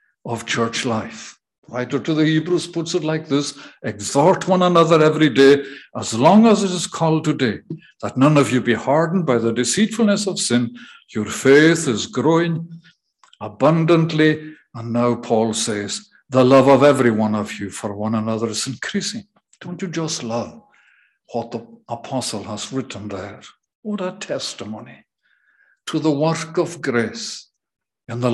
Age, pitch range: 60-79, 120-170 Hz